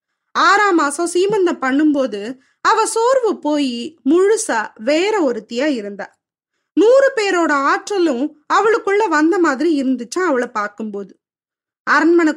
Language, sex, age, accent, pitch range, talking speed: Tamil, female, 20-39, native, 270-370 Hz, 100 wpm